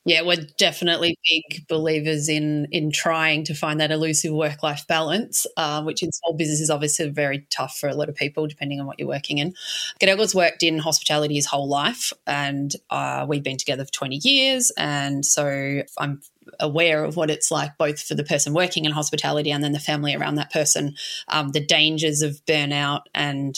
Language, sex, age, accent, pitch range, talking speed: English, female, 30-49, Australian, 150-175 Hz, 195 wpm